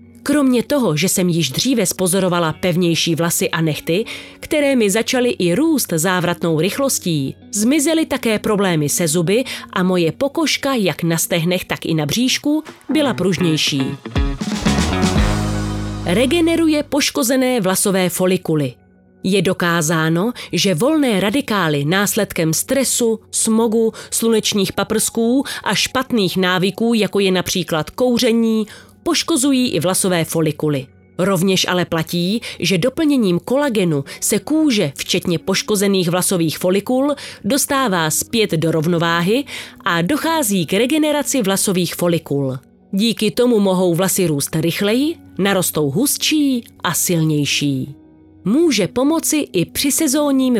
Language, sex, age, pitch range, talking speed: Slovak, female, 30-49, 170-245 Hz, 115 wpm